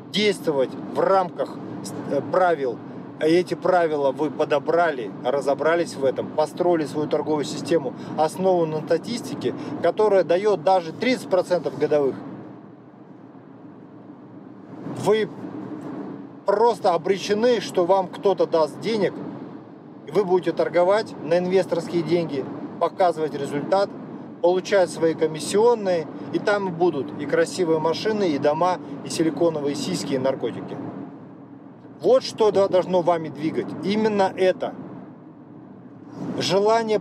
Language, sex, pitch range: Russian, male, 155-195 Hz